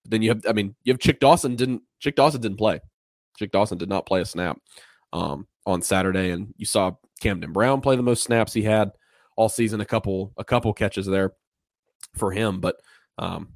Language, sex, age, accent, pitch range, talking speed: English, male, 20-39, American, 95-115 Hz, 210 wpm